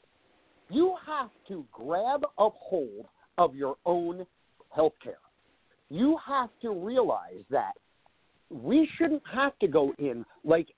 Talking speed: 130 wpm